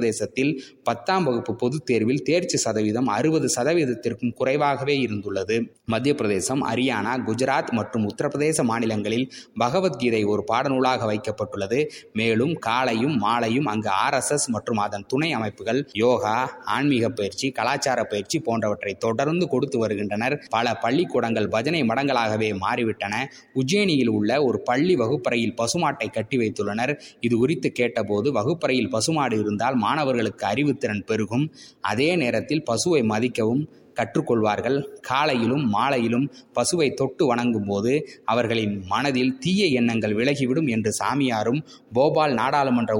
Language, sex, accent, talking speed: Tamil, male, native, 110 wpm